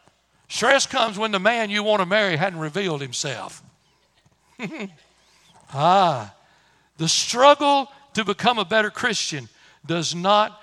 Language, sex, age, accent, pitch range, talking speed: English, male, 60-79, American, 155-200 Hz, 125 wpm